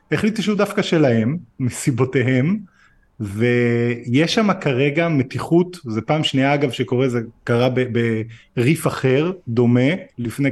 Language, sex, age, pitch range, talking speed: Hebrew, male, 20-39, 120-170 Hz, 120 wpm